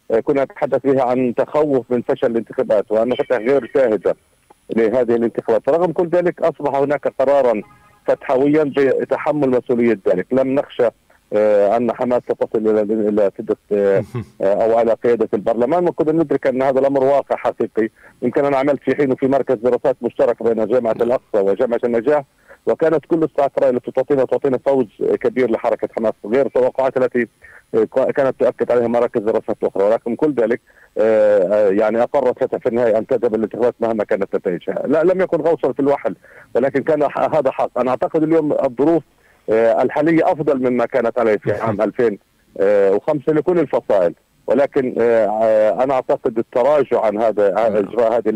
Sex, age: male, 50-69